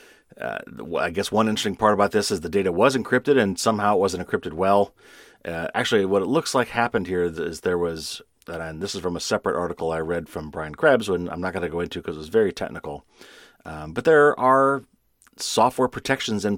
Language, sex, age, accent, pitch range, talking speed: English, male, 40-59, American, 85-105 Hz, 225 wpm